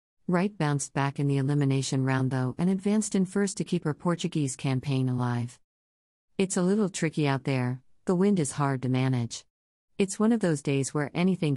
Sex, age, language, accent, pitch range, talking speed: female, 50-69, English, American, 130-155 Hz, 190 wpm